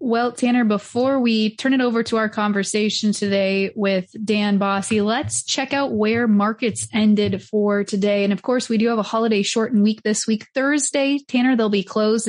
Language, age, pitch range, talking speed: English, 20-39, 205-240 Hz, 190 wpm